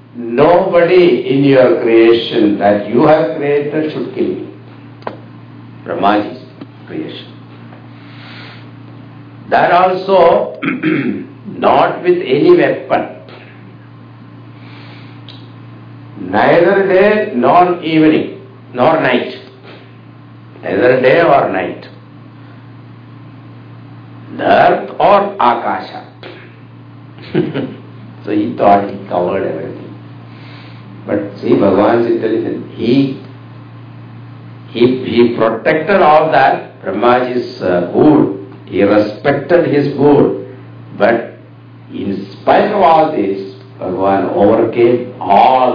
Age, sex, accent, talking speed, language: 60-79, male, Indian, 85 wpm, English